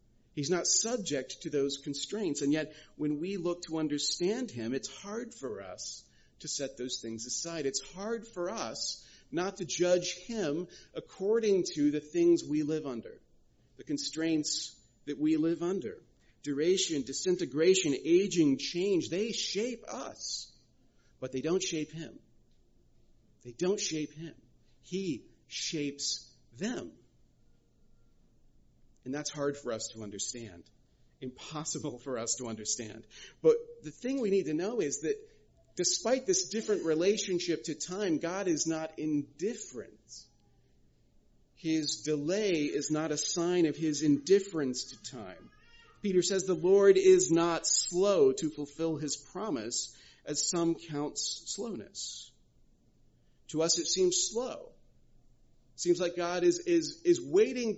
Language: English